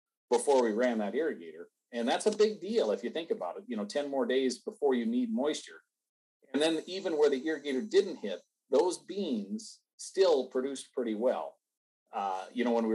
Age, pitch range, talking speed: 40-59, 110-155 Hz, 200 wpm